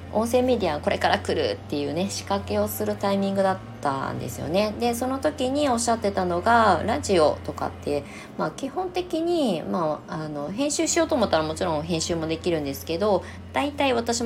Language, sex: Japanese, female